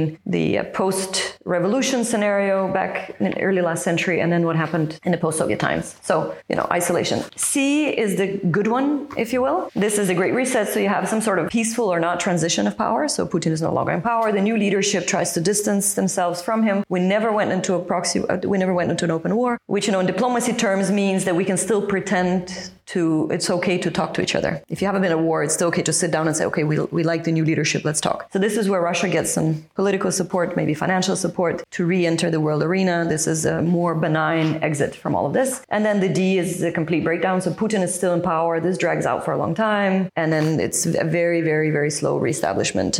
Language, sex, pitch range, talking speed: Danish, female, 170-205 Hz, 245 wpm